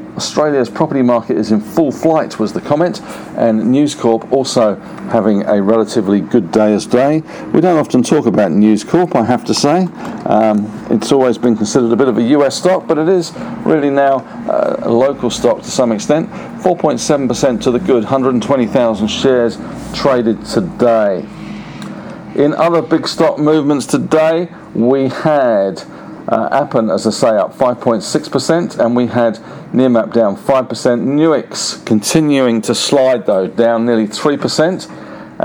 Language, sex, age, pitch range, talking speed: English, male, 50-69, 110-140 Hz, 155 wpm